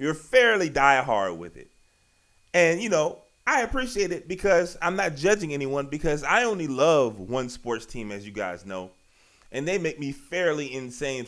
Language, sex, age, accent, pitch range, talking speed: English, male, 30-49, American, 115-165 Hz, 175 wpm